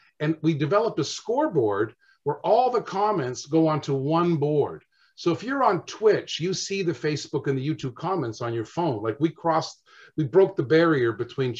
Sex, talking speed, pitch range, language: male, 190 wpm, 130-165 Hz, English